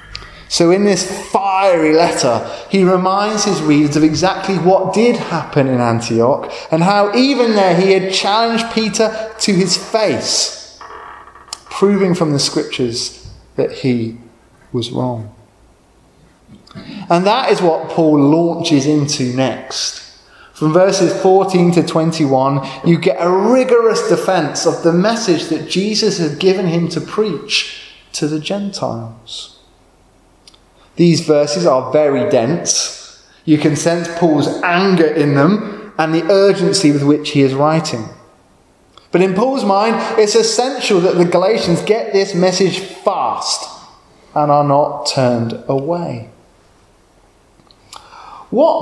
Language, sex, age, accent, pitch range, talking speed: English, male, 20-39, British, 135-195 Hz, 130 wpm